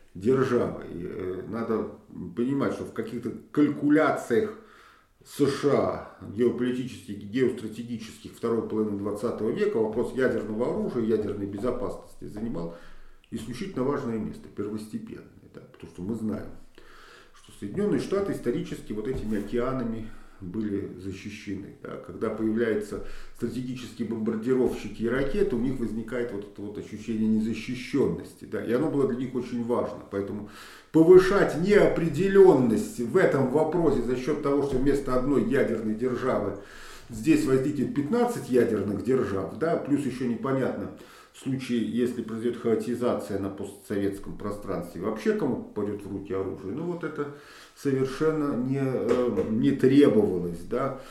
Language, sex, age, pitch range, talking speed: Russian, male, 50-69, 105-130 Hz, 120 wpm